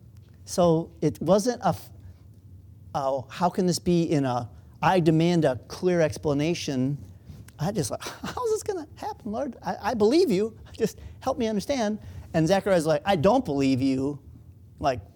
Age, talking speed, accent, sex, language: 40-59, 160 wpm, American, male, English